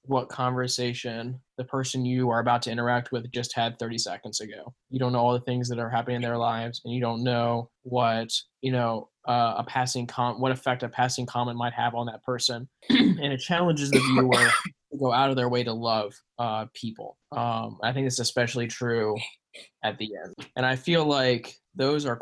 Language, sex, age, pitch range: English, male, 10-29, 115-125 Hz